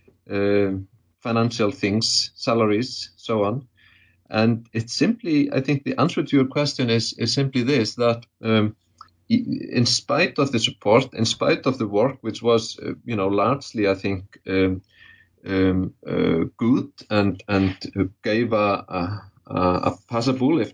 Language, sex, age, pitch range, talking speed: English, male, 30-49, 100-120 Hz, 150 wpm